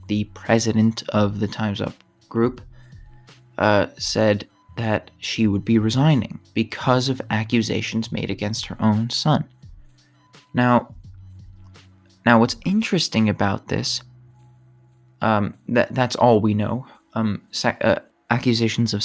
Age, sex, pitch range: 20-39, male, 105-120 Hz